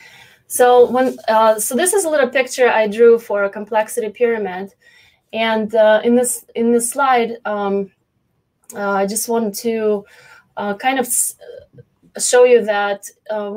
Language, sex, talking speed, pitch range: English, female, 160 wpm, 200-235 Hz